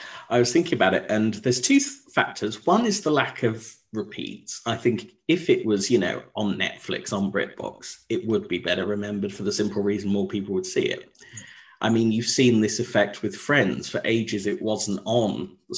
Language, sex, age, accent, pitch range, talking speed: English, male, 40-59, British, 105-130 Hz, 205 wpm